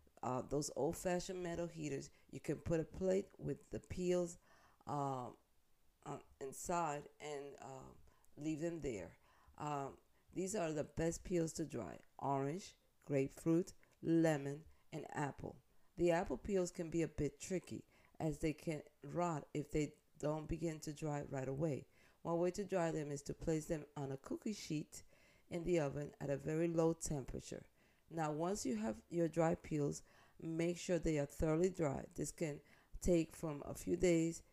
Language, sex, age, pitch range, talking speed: English, female, 50-69, 145-170 Hz, 165 wpm